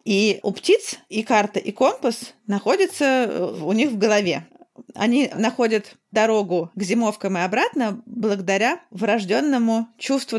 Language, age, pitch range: Russian, 30-49, 195-240 Hz